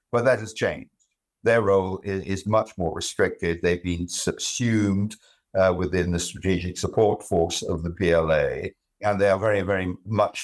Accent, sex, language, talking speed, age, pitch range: British, male, English, 165 wpm, 60-79, 90-120 Hz